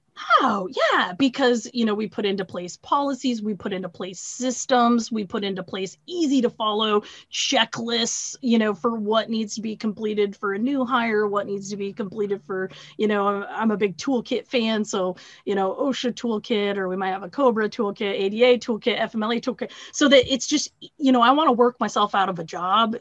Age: 30-49